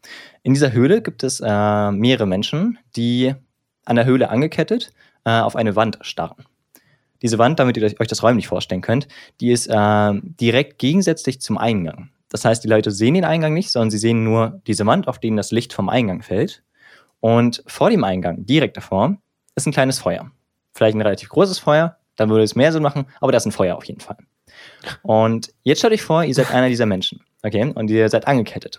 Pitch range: 110-140 Hz